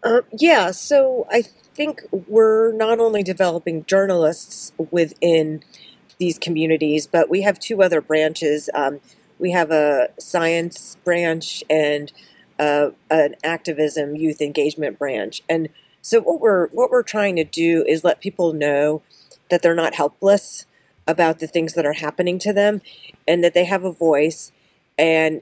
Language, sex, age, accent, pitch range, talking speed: English, female, 40-59, American, 150-175 Hz, 150 wpm